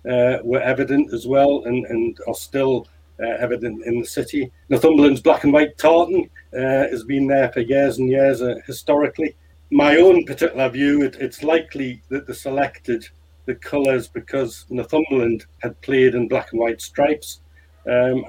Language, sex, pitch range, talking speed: English, male, 115-135 Hz, 165 wpm